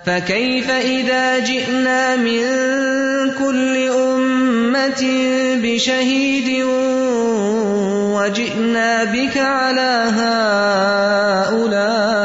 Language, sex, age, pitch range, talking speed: English, male, 30-49, 195-255 Hz, 60 wpm